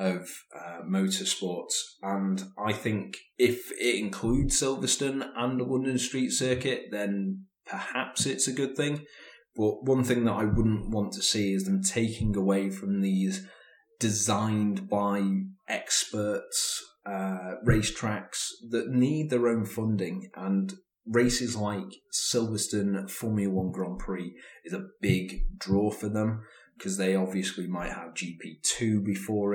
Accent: British